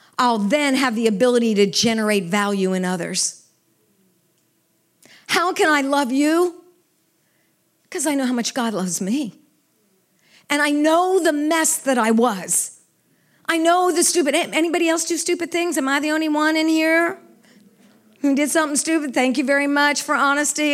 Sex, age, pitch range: female, 50-69, 235-325 Hz